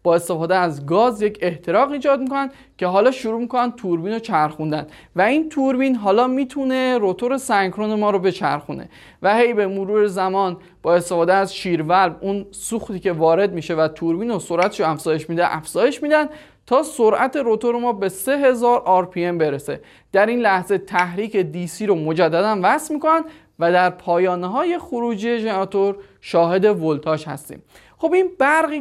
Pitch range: 175-235 Hz